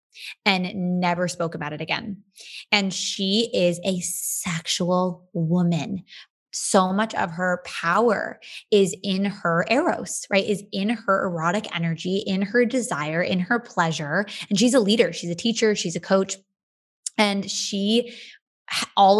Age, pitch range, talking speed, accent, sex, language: 20-39, 180-245 Hz, 145 wpm, American, female, English